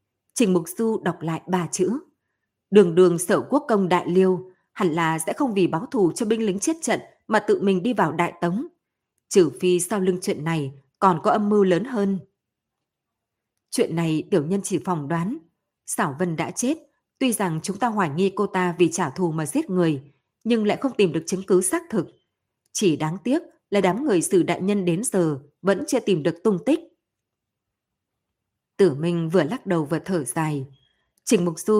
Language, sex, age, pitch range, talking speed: Vietnamese, female, 20-39, 165-210 Hz, 200 wpm